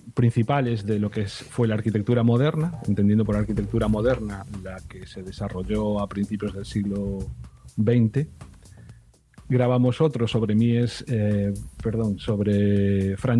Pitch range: 100-120 Hz